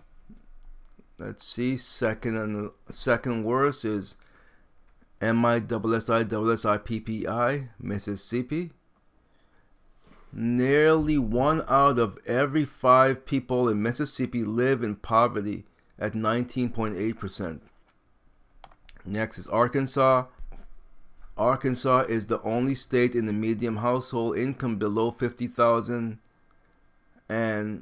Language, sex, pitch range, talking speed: English, male, 105-120 Hz, 85 wpm